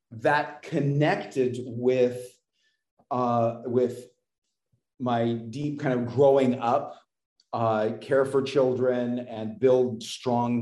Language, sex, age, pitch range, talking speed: English, male, 40-59, 115-140 Hz, 100 wpm